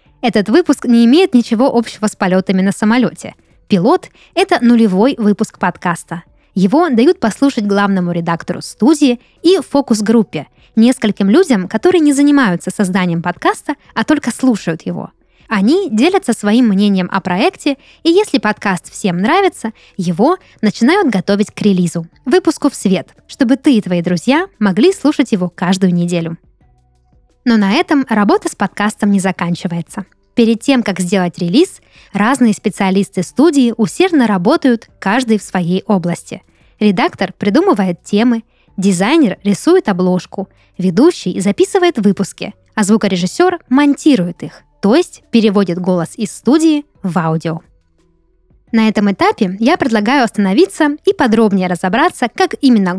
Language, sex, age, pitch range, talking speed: Russian, female, 20-39, 185-275 Hz, 130 wpm